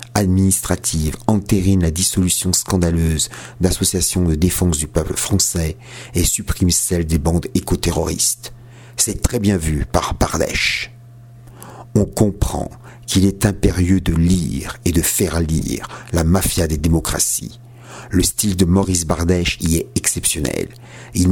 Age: 50-69